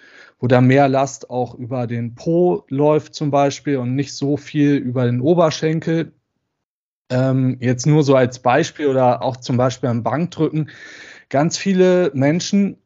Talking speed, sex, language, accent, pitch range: 155 wpm, male, German, German, 125-155 Hz